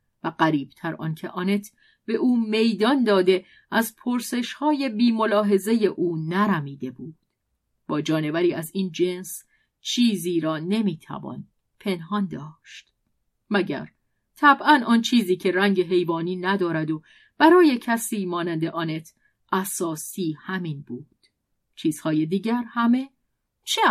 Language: Persian